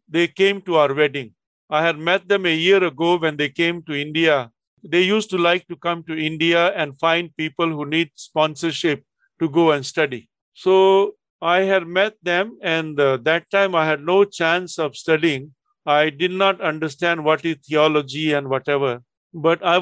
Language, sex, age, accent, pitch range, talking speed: English, male, 50-69, Indian, 150-175 Hz, 185 wpm